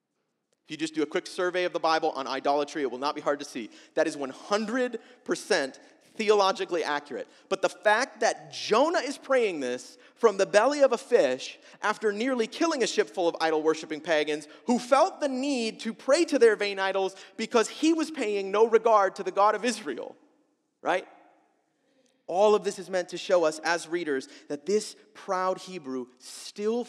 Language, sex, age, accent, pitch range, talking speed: English, male, 30-49, American, 160-235 Hz, 185 wpm